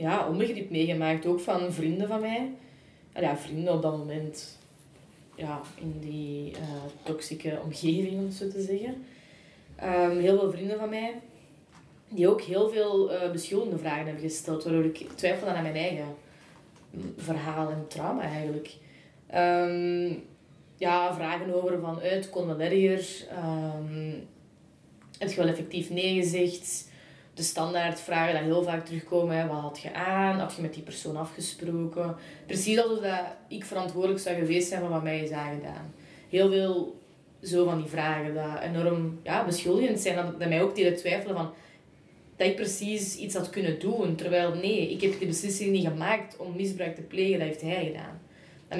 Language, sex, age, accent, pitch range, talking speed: Dutch, female, 20-39, Belgian, 160-190 Hz, 160 wpm